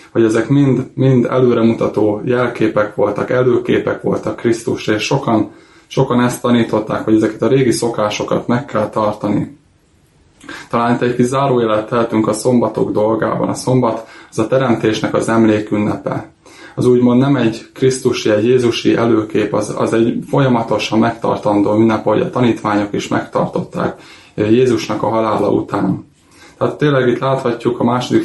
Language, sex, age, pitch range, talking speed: Hungarian, male, 20-39, 110-125 Hz, 140 wpm